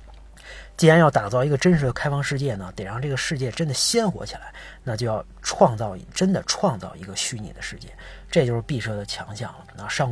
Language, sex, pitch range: Chinese, male, 125-170 Hz